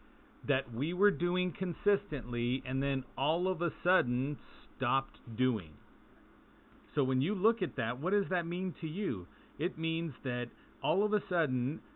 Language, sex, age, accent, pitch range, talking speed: English, male, 40-59, American, 130-185 Hz, 160 wpm